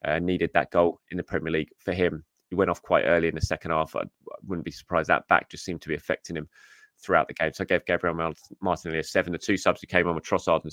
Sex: male